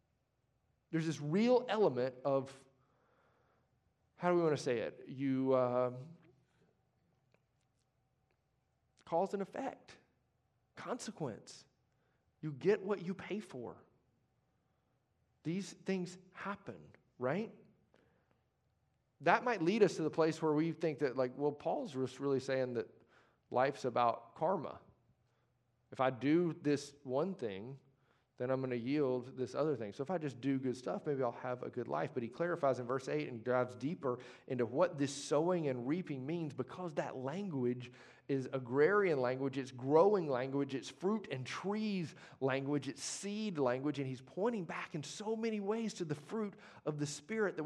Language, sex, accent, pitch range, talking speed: English, male, American, 130-175 Hz, 155 wpm